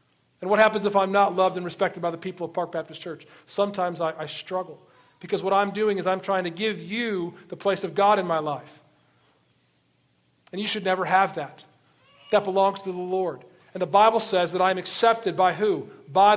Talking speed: 215 wpm